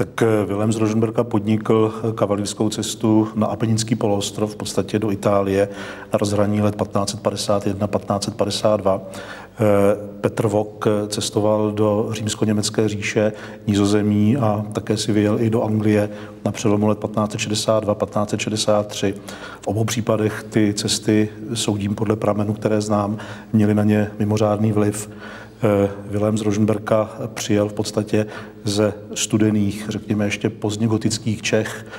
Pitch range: 105-110 Hz